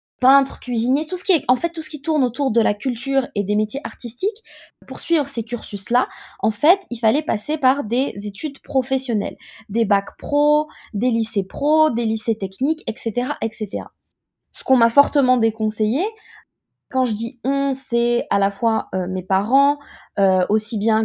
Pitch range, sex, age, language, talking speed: 210-280 Hz, female, 20-39, French, 180 wpm